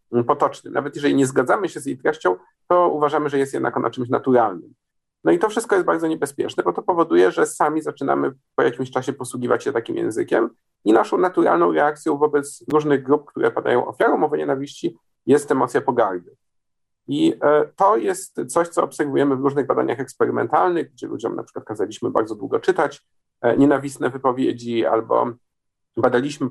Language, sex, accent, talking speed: Polish, male, native, 165 wpm